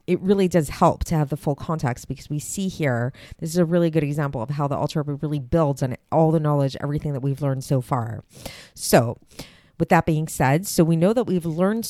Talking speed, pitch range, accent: 230 wpm, 140-175 Hz, American